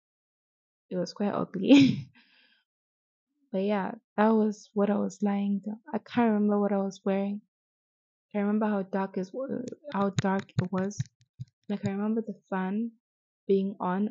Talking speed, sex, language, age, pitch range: 155 wpm, female, English, 20-39, 180-210 Hz